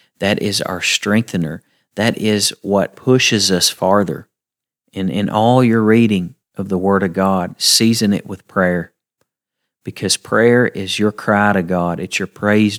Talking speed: 160 wpm